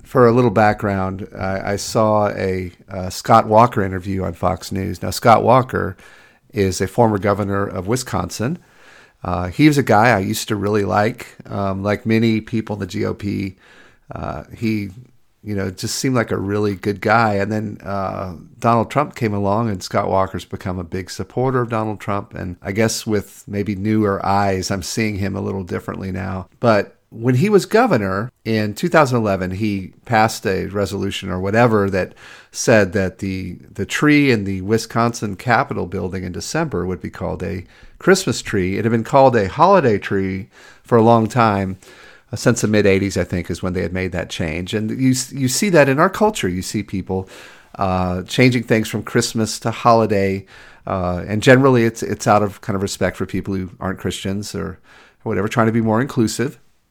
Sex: male